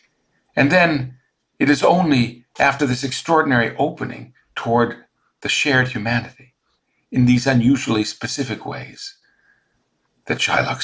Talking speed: 110 wpm